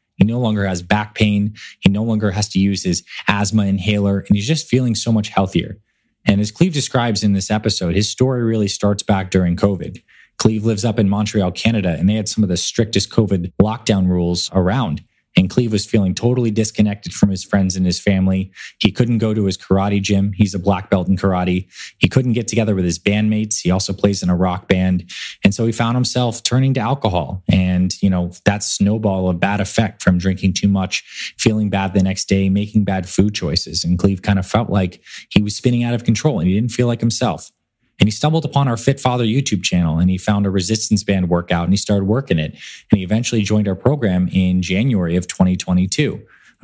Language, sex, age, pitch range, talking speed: English, male, 20-39, 95-110 Hz, 220 wpm